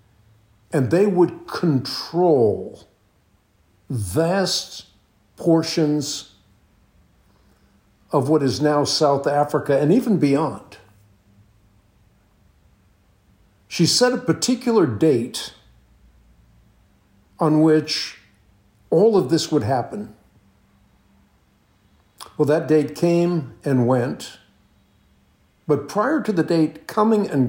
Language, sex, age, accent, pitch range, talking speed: English, male, 60-79, American, 100-160 Hz, 85 wpm